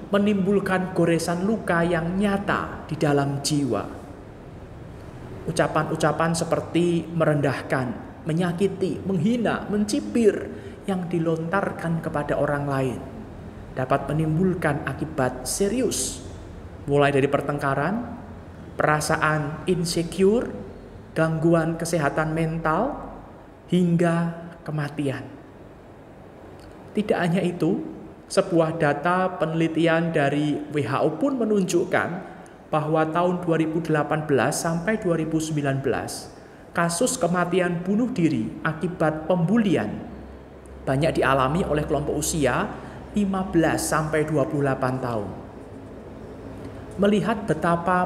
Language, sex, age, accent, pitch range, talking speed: Indonesian, male, 20-39, native, 140-175 Hz, 80 wpm